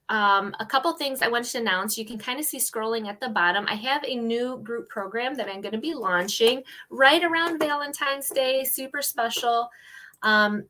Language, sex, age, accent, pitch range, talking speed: English, female, 20-39, American, 200-250 Hz, 200 wpm